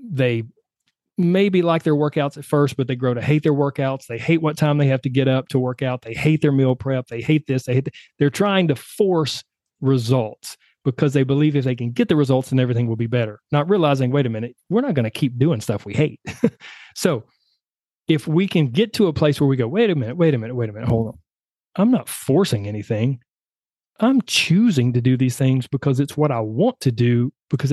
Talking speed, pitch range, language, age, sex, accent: 240 wpm, 125-175 Hz, English, 30-49, male, American